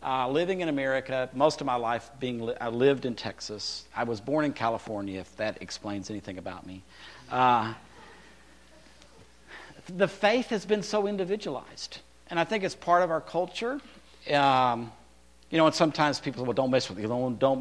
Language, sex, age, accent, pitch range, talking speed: English, male, 50-69, American, 105-175 Hz, 180 wpm